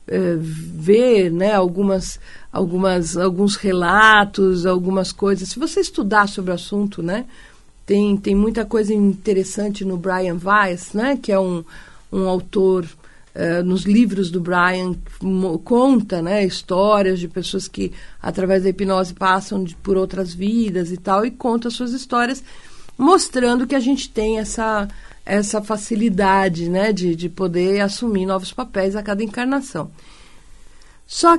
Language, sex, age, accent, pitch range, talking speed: Portuguese, female, 50-69, Brazilian, 190-260 Hz, 130 wpm